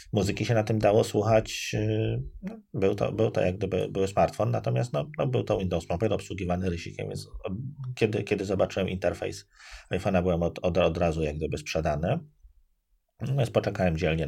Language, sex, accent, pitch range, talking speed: Polish, male, native, 80-110 Hz, 170 wpm